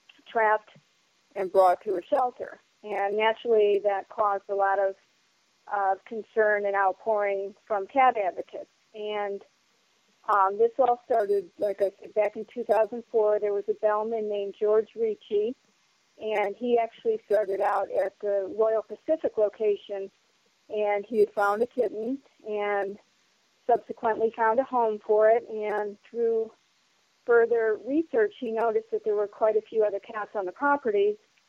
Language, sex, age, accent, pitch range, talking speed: English, female, 40-59, American, 205-230 Hz, 150 wpm